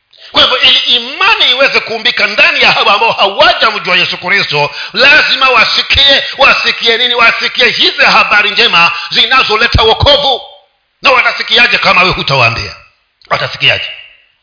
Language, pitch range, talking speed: Swahili, 180-255 Hz, 115 wpm